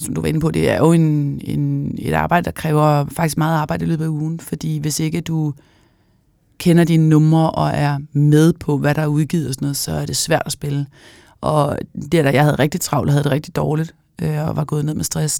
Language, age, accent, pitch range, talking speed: Danish, 30-49, native, 150-175 Hz, 245 wpm